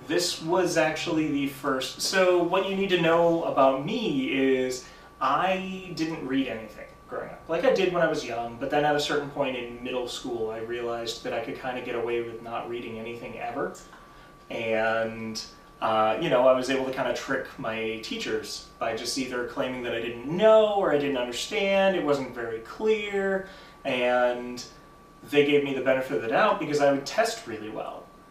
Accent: American